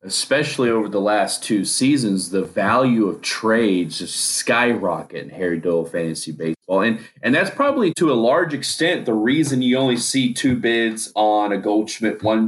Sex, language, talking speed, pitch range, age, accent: male, English, 175 wpm, 105-120 Hz, 30-49, American